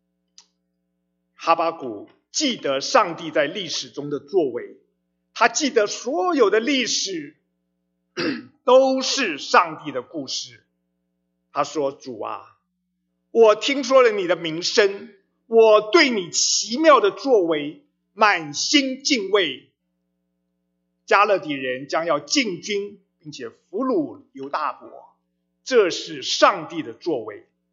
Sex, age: male, 50-69